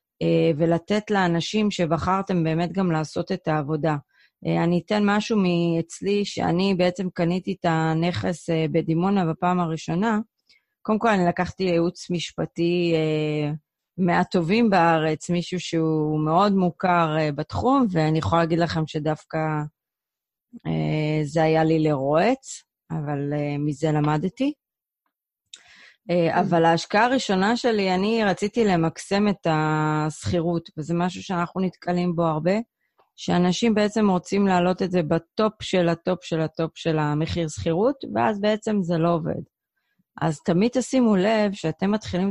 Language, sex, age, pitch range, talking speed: Hebrew, female, 30-49, 165-200 Hz, 130 wpm